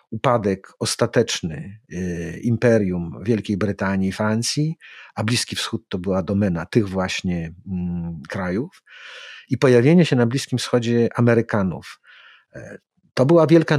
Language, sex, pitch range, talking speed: Polish, male, 105-130 Hz, 115 wpm